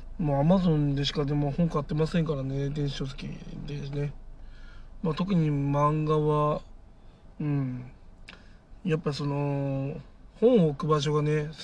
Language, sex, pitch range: Japanese, male, 135-155 Hz